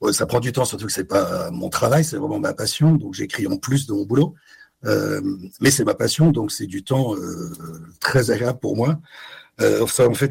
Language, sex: French, male